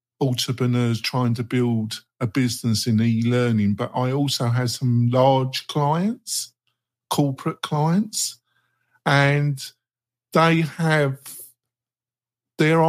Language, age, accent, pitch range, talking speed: English, 50-69, British, 115-130 Hz, 100 wpm